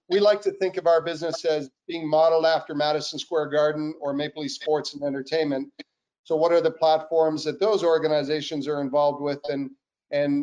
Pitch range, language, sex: 145-165 Hz, English, male